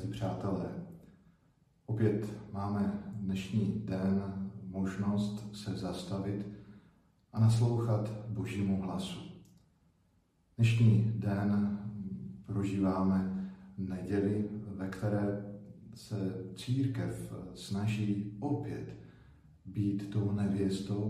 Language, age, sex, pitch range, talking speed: Slovak, 50-69, male, 100-115 Hz, 70 wpm